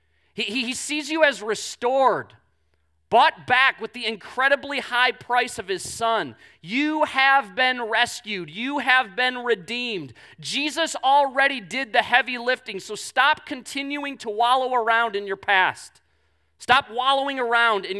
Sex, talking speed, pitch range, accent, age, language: male, 140 wpm, 170-250 Hz, American, 30-49, English